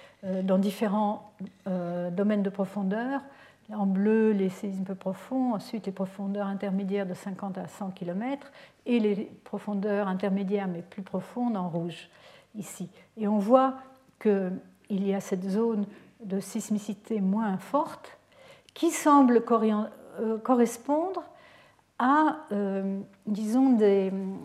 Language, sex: French, female